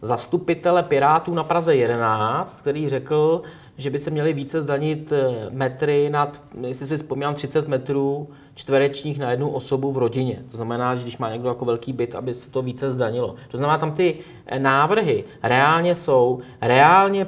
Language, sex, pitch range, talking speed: Czech, male, 135-160 Hz, 165 wpm